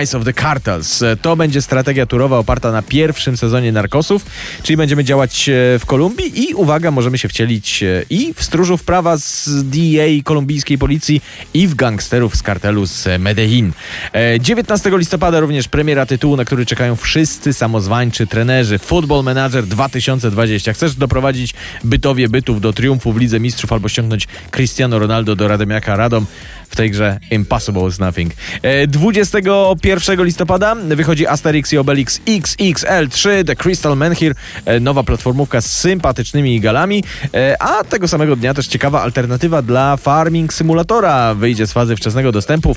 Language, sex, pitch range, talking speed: Polish, male, 115-160 Hz, 145 wpm